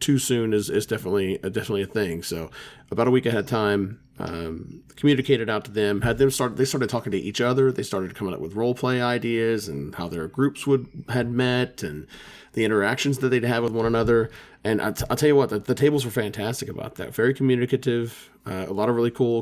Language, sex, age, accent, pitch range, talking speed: English, male, 30-49, American, 100-125 Hz, 235 wpm